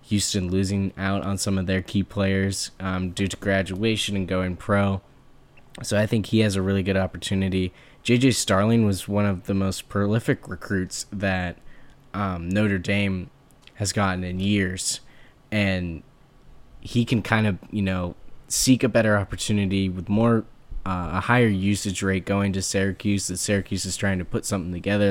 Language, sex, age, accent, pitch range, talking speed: English, male, 10-29, American, 95-110 Hz, 170 wpm